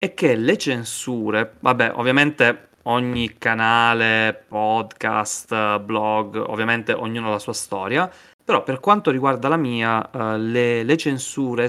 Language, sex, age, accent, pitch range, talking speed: Italian, male, 20-39, native, 110-130 Hz, 125 wpm